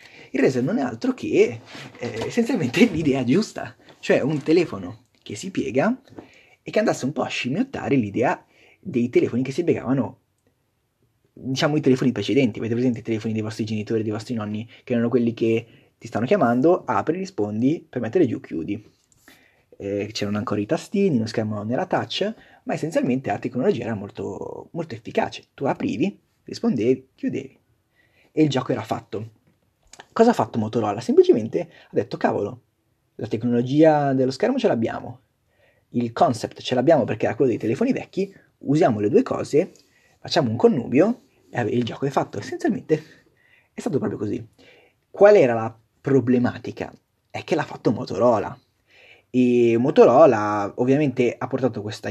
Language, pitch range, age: Italian, 115-150 Hz, 30-49